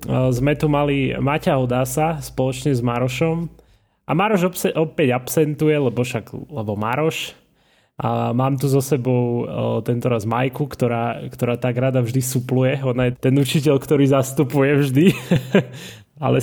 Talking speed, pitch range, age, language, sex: 140 wpm, 120-145 Hz, 20-39, Slovak, male